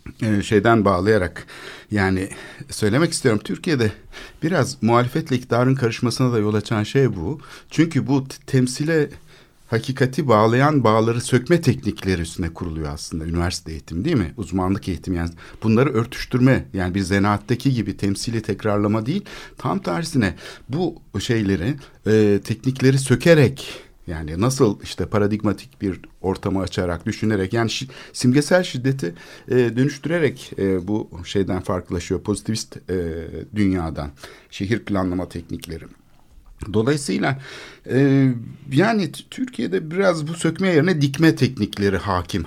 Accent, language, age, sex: native, Turkish, 60-79, male